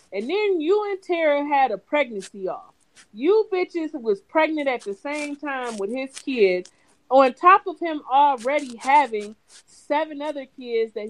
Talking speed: 160 wpm